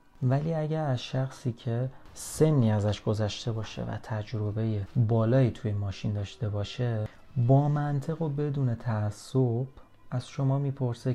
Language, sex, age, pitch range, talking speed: Persian, male, 30-49, 110-145 Hz, 125 wpm